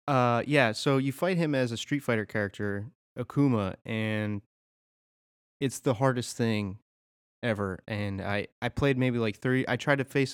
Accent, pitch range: American, 105-130 Hz